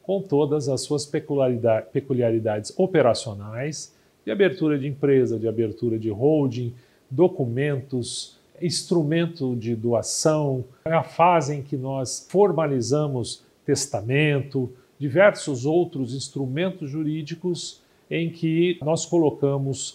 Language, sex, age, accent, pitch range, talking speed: Portuguese, male, 50-69, Brazilian, 130-160 Hz, 100 wpm